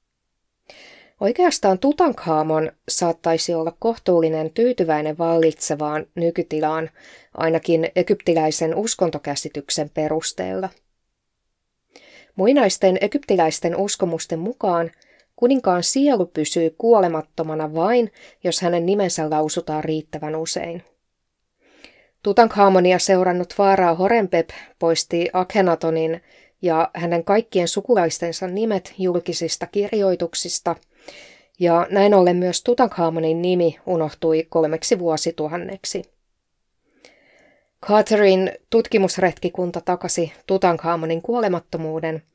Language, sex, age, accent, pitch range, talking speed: Finnish, female, 20-39, native, 160-205 Hz, 75 wpm